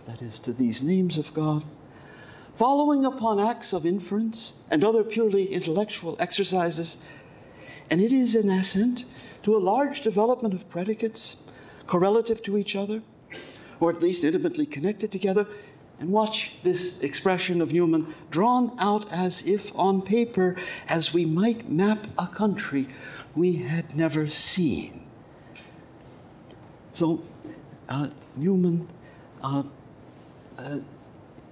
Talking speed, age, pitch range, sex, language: 120 wpm, 60-79, 160-225 Hz, male, English